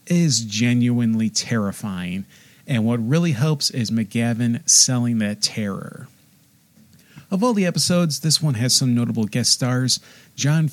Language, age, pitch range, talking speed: English, 40-59, 115-155 Hz, 135 wpm